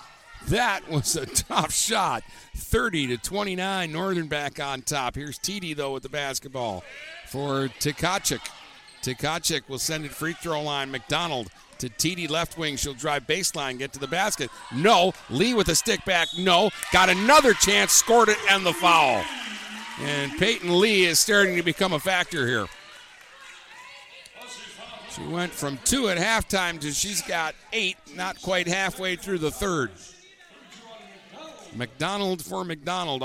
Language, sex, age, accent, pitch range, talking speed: English, male, 50-69, American, 140-185 Hz, 150 wpm